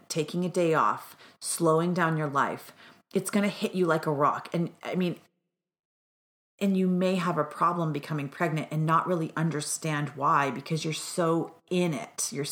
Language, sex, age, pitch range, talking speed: English, female, 30-49, 155-200 Hz, 180 wpm